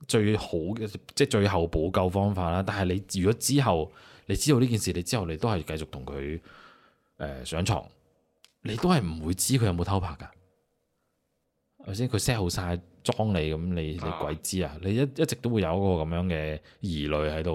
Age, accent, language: 20-39, native, Chinese